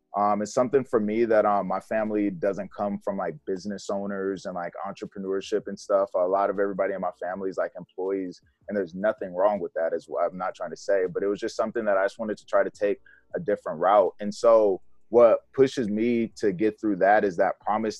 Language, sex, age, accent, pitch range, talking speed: English, male, 20-39, American, 95-110 Hz, 235 wpm